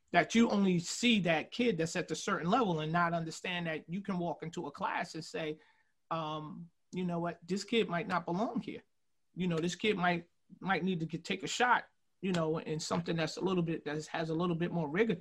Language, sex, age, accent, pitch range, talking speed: English, male, 30-49, American, 160-205 Hz, 235 wpm